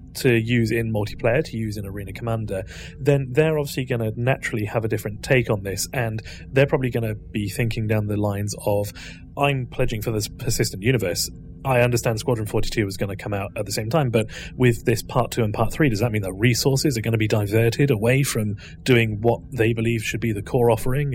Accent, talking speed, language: British, 230 wpm, English